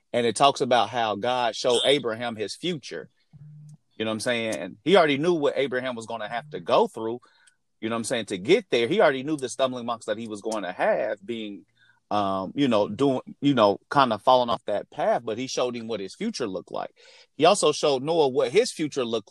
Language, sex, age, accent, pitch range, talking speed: English, male, 30-49, American, 110-145 Hz, 240 wpm